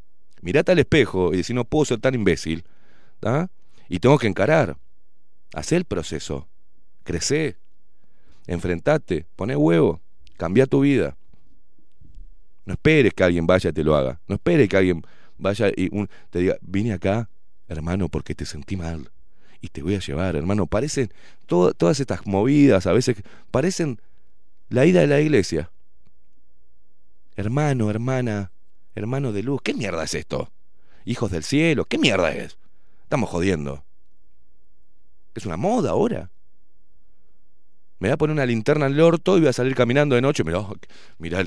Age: 40-59